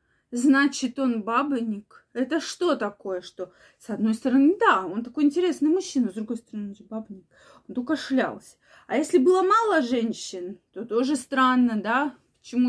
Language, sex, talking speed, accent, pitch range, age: Russian, female, 150 wpm, native, 215-275 Hz, 20-39